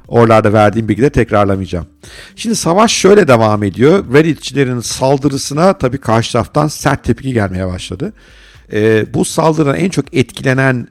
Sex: male